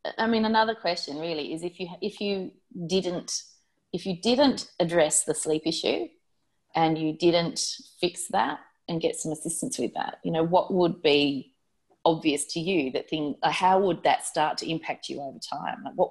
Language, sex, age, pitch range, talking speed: English, female, 30-49, 150-185 Hz, 185 wpm